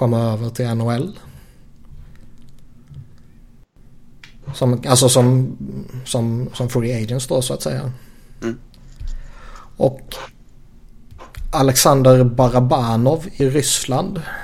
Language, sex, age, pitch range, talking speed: Swedish, male, 20-39, 120-130 Hz, 85 wpm